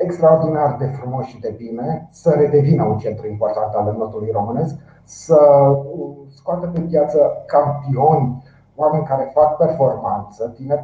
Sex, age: male, 30-49